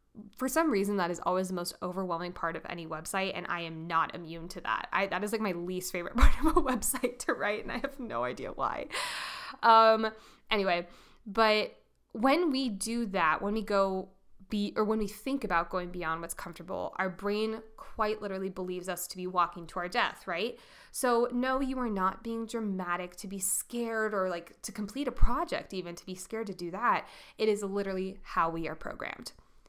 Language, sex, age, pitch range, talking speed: English, female, 20-39, 185-240 Hz, 205 wpm